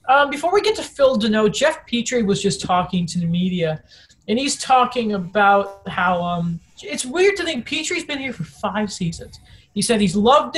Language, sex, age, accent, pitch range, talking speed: English, male, 20-39, American, 180-250 Hz, 200 wpm